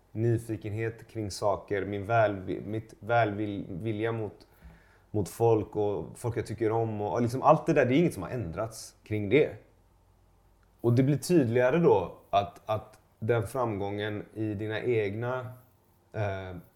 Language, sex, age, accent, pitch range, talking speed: Swedish, male, 30-49, native, 95-125 Hz, 145 wpm